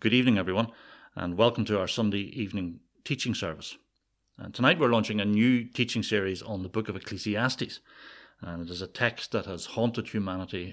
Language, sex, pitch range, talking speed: English, male, 100-120 Hz, 180 wpm